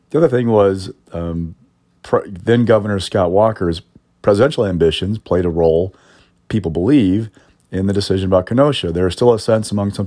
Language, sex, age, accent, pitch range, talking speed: English, male, 40-59, American, 85-105 Hz, 160 wpm